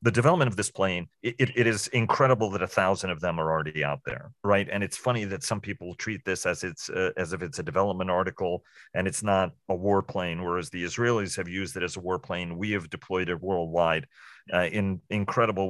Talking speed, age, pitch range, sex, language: 215 wpm, 40-59, 90-105 Hz, male, English